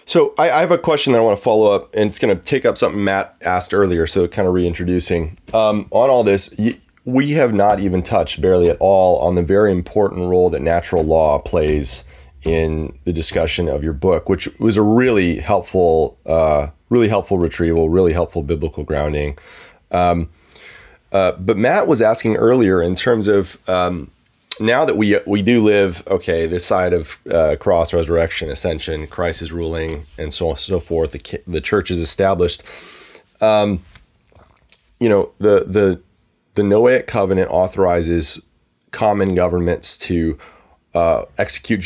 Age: 30-49